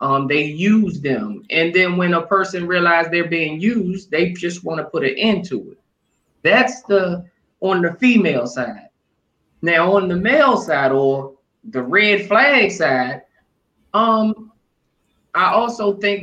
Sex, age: male, 20-39